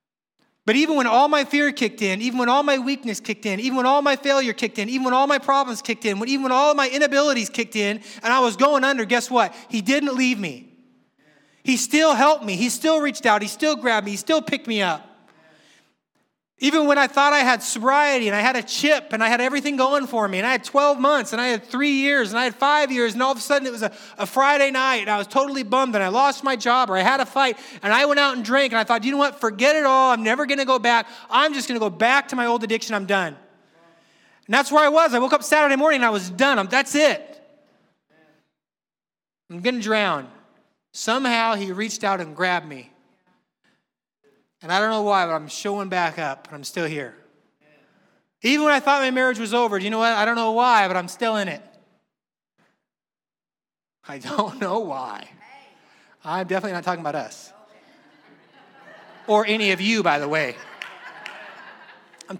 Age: 30-49